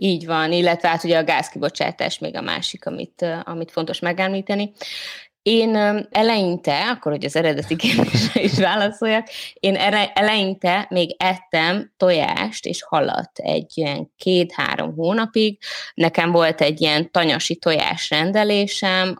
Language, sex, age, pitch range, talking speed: Hungarian, female, 20-39, 150-190 Hz, 130 wpm